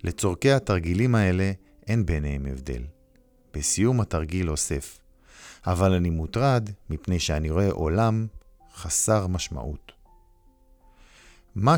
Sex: male